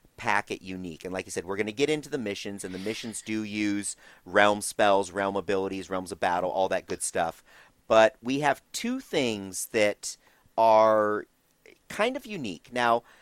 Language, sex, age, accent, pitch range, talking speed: English, male, 40-59, American, 100-130 Hz, 185 wpm